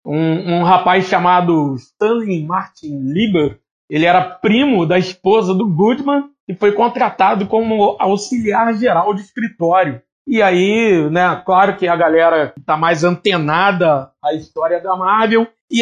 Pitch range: 155-200 Hz